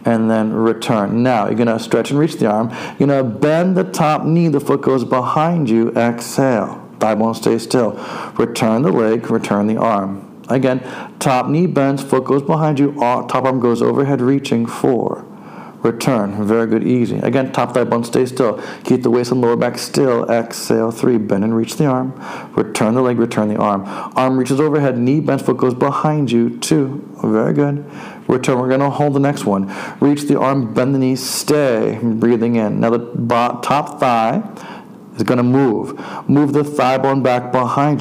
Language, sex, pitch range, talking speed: English, male, 115-140 Hz, 195 wpm